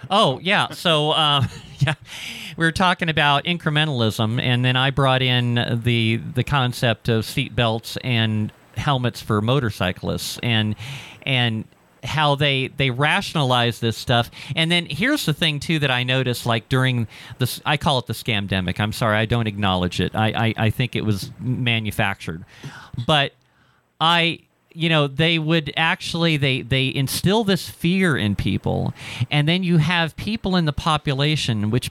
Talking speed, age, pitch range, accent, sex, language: 160 wpm, 40-59, 115-150 Hz, American, male, English